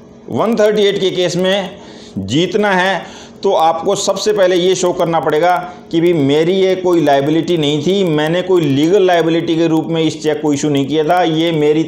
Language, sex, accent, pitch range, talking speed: Hindi, male, native, 155-185 Hz, 190 wpm